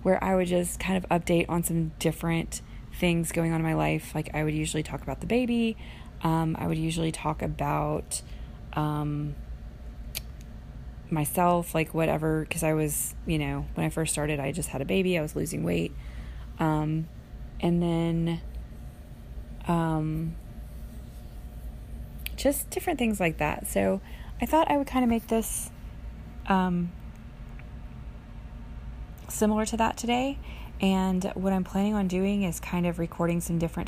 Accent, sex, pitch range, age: American, female, 120-175 Hz, 20-39